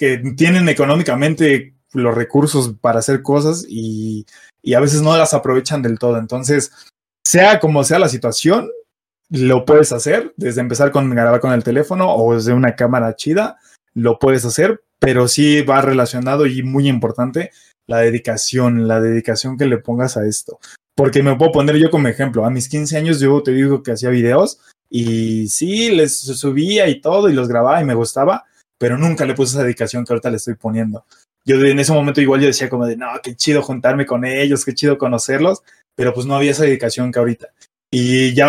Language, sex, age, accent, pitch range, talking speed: Spanish, male, 20-39, Mexican, 120-145 Hz, 195 wpm